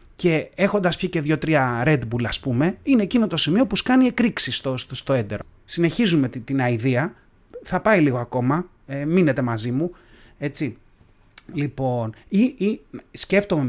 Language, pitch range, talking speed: Greek, 125-175 Hz, 160 wpm